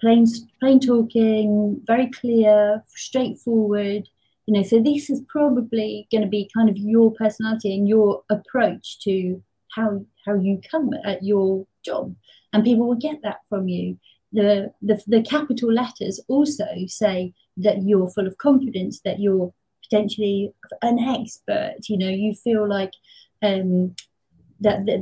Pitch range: 190-225 Hz